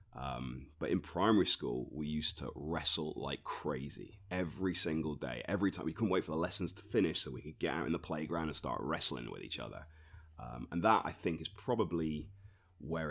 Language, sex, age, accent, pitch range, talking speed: English, male, 30-49, British, 75-90 Hz, 210 wpm